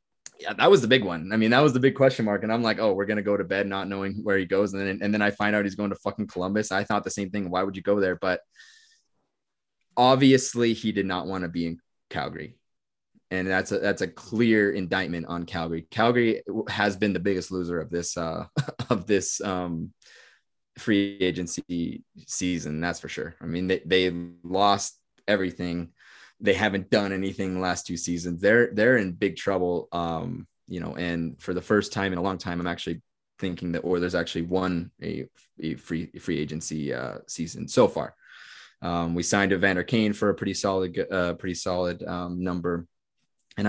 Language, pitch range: English, 90-105 Hz